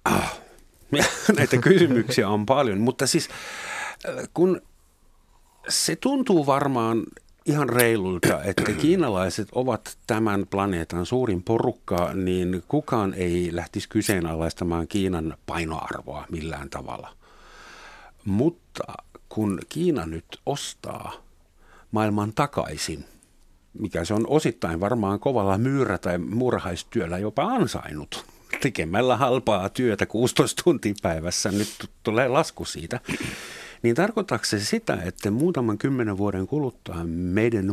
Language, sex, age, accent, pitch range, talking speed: Finnish, male, 50-69, native, 85-125 Hz, 105 wpm